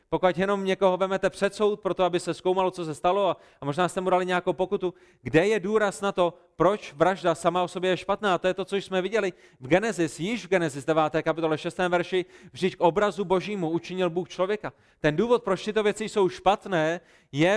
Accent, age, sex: native, 30-49, male